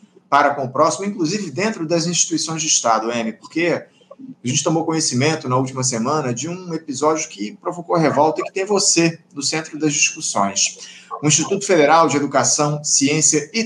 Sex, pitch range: male, 145-190 Hz